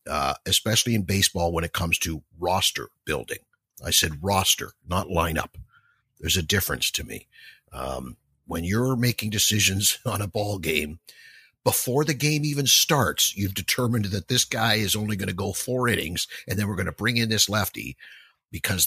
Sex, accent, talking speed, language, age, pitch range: male, American, 180 wpm, English, 50-69, 85-125 Hz